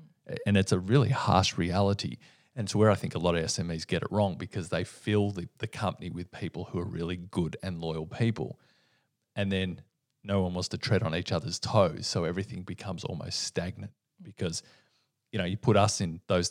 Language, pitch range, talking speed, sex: English, 95-115 Hz, 205 wpm, male